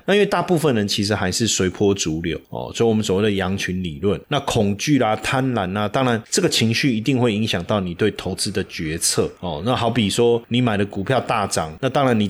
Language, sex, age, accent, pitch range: Chinese, male, 20-39, native, 105-130 Hz